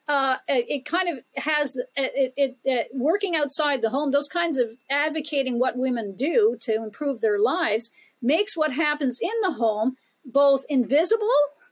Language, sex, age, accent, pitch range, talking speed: English, female, 50-69, American, 225-290 Hz, 165 wpm